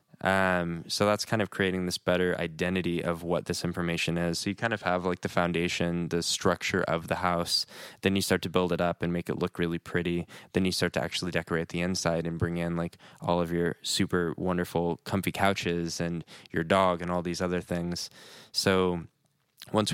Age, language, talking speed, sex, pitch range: 10-29, English, 210 wpm, male, 85-95 Hz